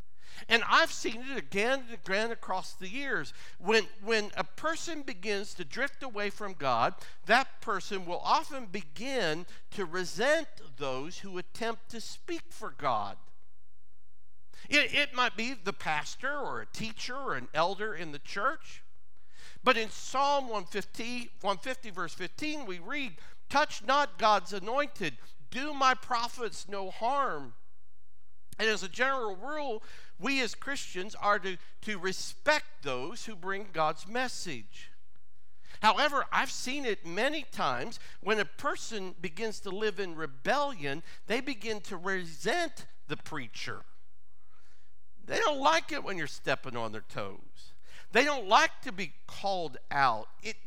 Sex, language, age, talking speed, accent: male, English, 50-69, 145 wpm, American